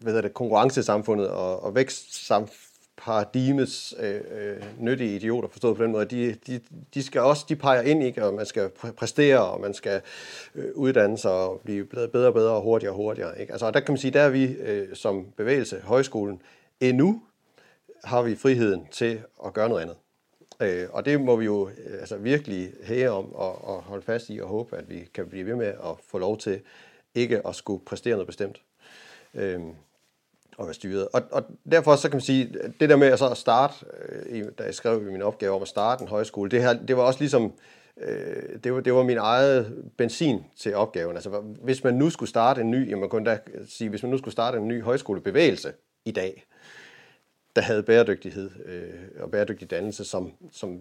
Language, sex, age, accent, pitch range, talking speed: Danish, male, 40-59, native, 100-130 Hz, 200 wpm